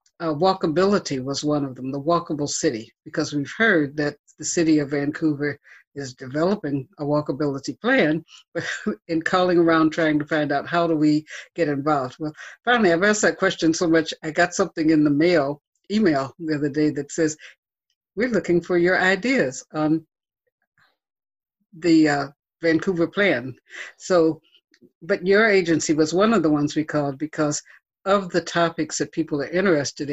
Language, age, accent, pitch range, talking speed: English, 60-79, American, 150-180 Hz, 165 wpm